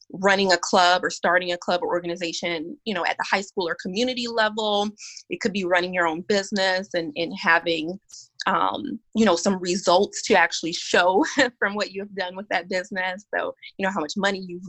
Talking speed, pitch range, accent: 205 wpm, 170-220 Hz, American